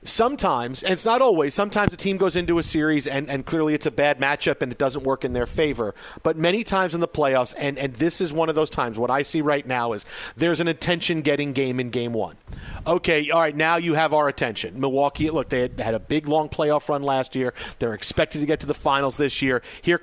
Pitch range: 130-170 Hz